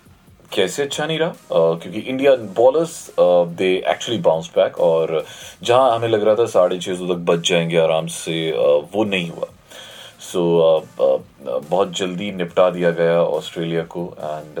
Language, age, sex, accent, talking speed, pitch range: Hindi, 30-49, male, native, 175 wpm, 85-120 Hz